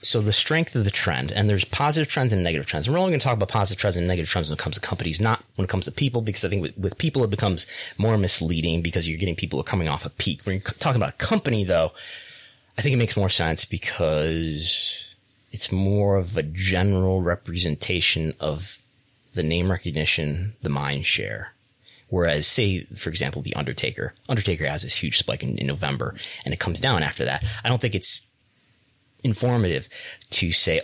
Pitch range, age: 90-120 Hz, 30-49